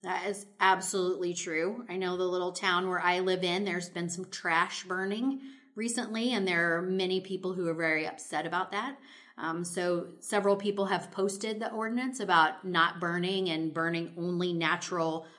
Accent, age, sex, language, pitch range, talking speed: American, 30-49, female, English, 170-200 Hz, 175 wpm